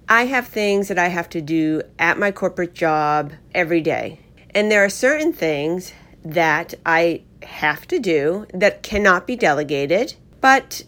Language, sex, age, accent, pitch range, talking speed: English, female, 40-59, American, 175-230 Hz, 160 wpm